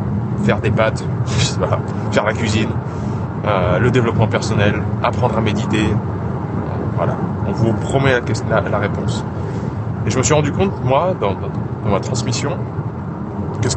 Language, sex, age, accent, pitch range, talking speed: French, male, 20-39, French, 110-130 Hz, 155 wpm